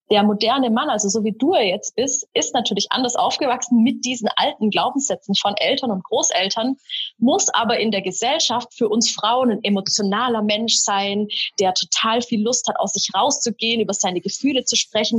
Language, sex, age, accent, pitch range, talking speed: German, female, 20-39, German, 200-250 Hz, 185 wpm